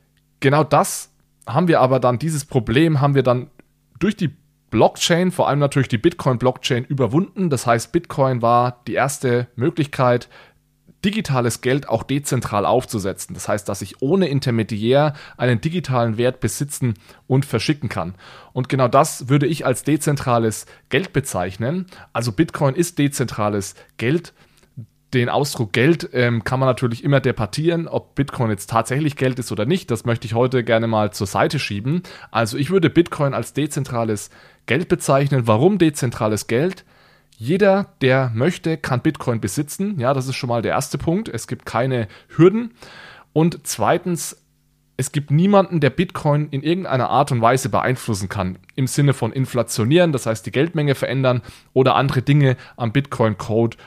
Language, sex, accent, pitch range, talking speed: German, male, German, 115-150 Hz, 160 wpm